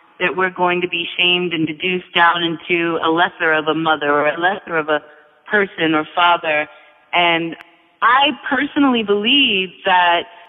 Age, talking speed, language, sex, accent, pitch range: 30-49, 160 wpm, English, female, American, 180-240 Hz